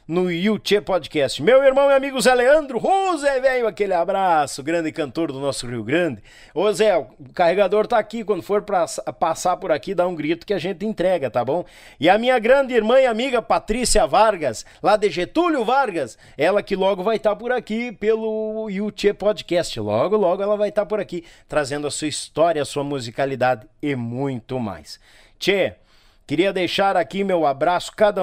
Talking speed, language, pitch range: 190 wpm, Portuguese, 140-210 Hz